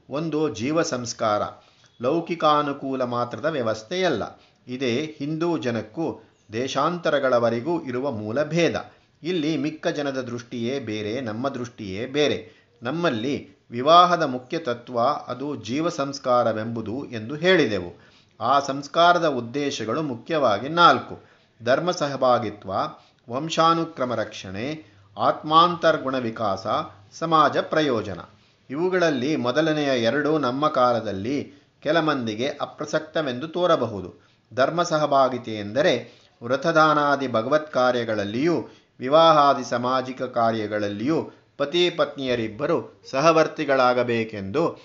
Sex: male